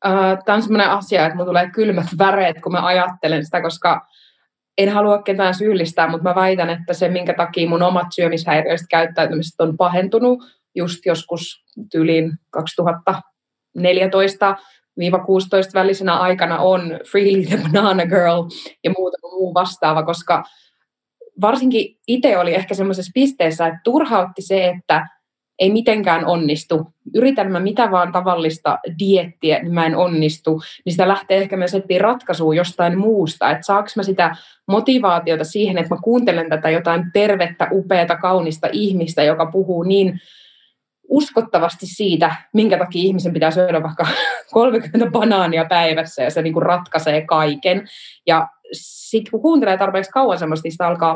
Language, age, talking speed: Finnish, 20-39, 140 wpm